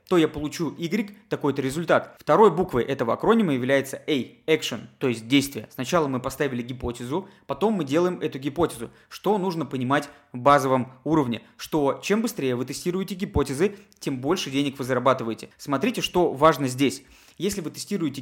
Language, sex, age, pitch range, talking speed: Russian, male, 20-39, 130-170 Hz, 160 wpm